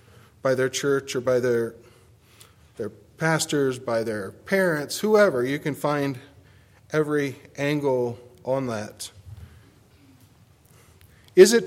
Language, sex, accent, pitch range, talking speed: English, male, American, 110-145 Hz, 110 wpm